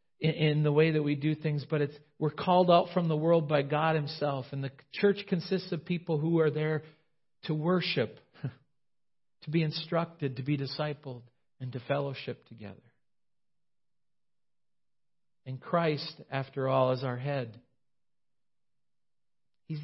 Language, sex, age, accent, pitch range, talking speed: English, male, 50-69, American, 135-155 Hz, 140 wpm